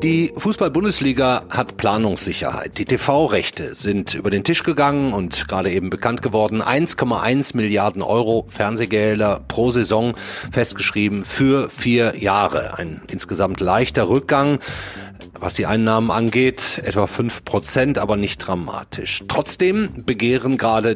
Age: 30-49